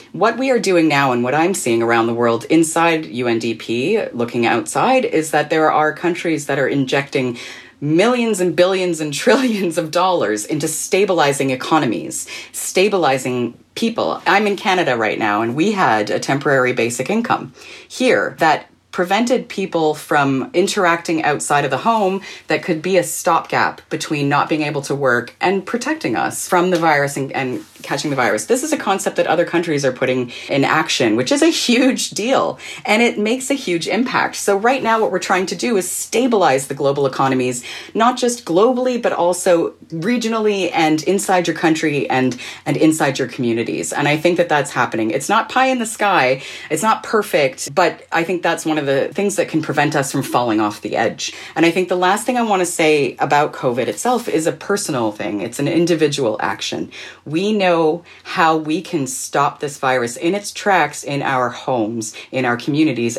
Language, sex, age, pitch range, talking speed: English, female, 30-49, 135-195 Hz, 190 wpm